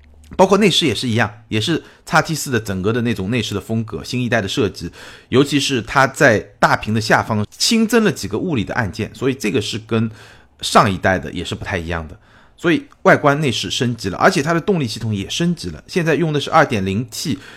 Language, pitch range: Chinese, 100-130 Hz